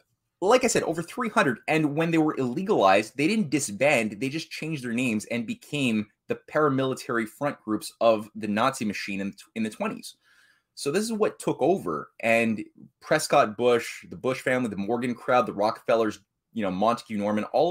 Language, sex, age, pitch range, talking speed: English, male, 20-39, 110-150 Hz, 180 wpm